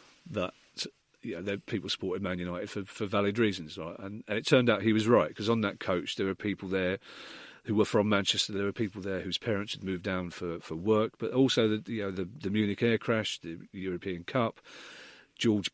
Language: English